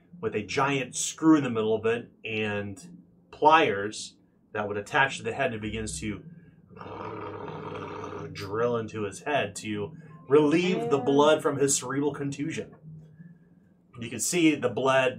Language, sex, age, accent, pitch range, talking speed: English, male, 30-49, American, 115-165 Hz, 155 wpm